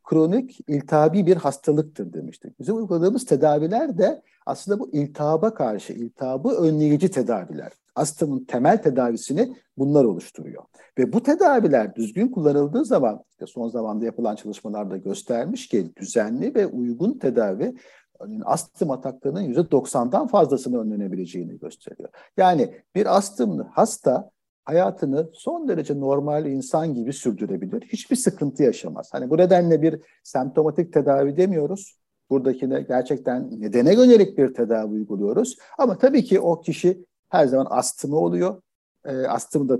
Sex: male